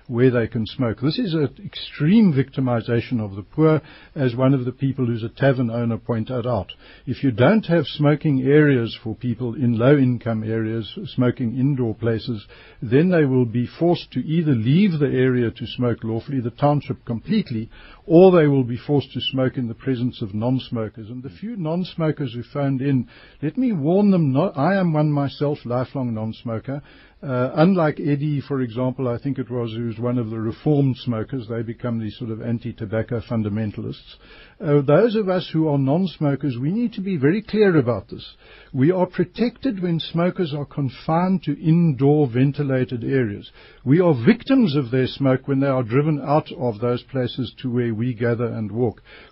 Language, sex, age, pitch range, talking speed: English, male, 60-79, 120-155 Hz, 185 wpm